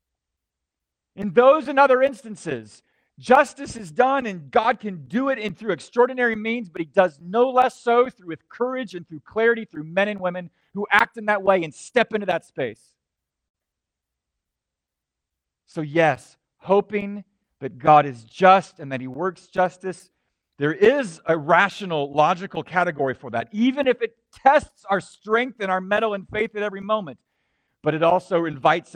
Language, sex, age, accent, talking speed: English, male, 40-59, American, 170 wpm